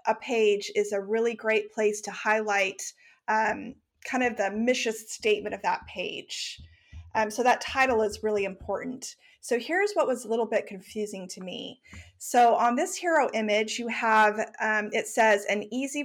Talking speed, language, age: 175 wpm, English, 30-49